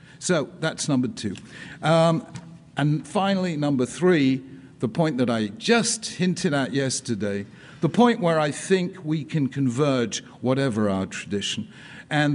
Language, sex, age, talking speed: English, male, 50-69, 140 wpm